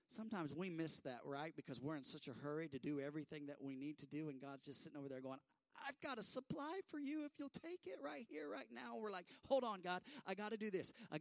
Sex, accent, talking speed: male, American, 275 wpm